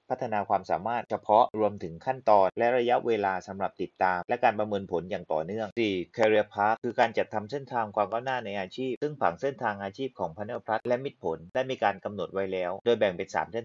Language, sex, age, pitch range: Thai, male, 30-49, 90-115 Hz